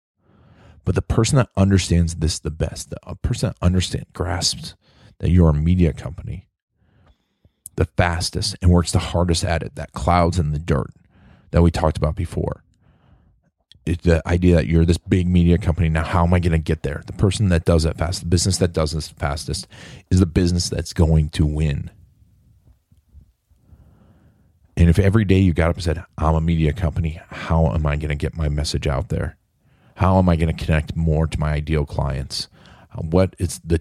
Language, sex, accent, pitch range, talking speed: English, male, American, 80-95 Hz, 190 wpm